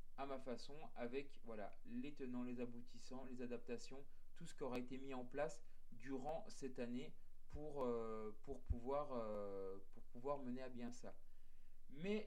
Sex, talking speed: male, 165 wpm